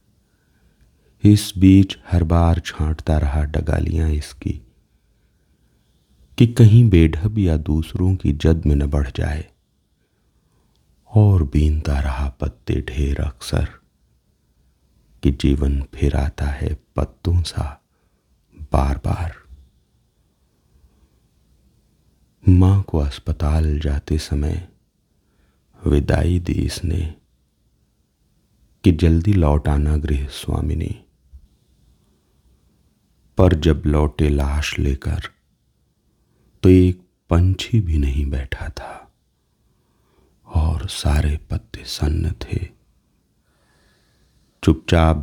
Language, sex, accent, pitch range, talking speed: Hindi, male, native, 70-90 Hz, 90 wpm